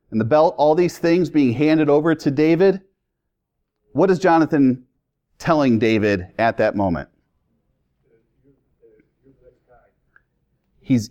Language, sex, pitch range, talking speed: English, male, 110-145 Hz, 110 wpm